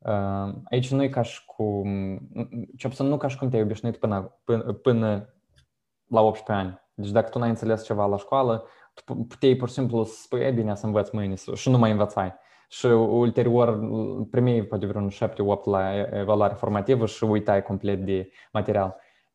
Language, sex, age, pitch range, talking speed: Romanian, male, 20-39, 100-120 Hz, 160 wpm